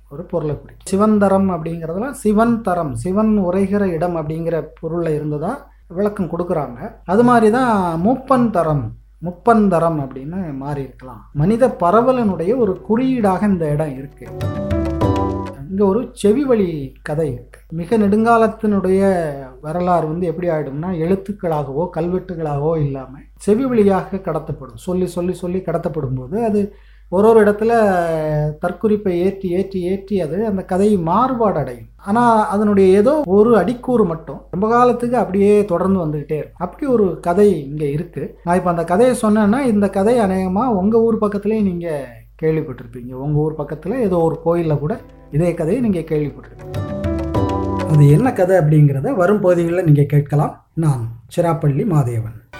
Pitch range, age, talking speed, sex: 150-205 Hz, 30-49, 105 wpm, male